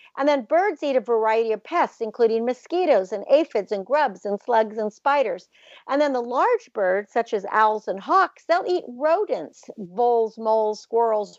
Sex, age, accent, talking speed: female, 50-69, American, 180 wpm